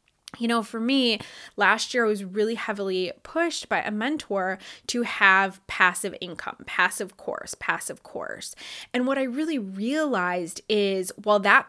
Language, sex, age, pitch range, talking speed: English, female, 20-39, 190-235 Hz, 155 wpm